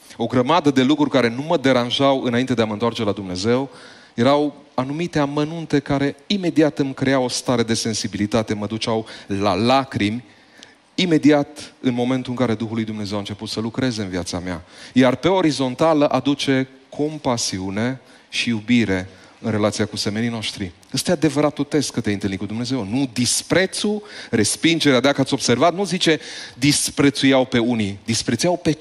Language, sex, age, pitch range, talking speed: Romanian, male, 30-49, 115-150 Hz, 165 wpm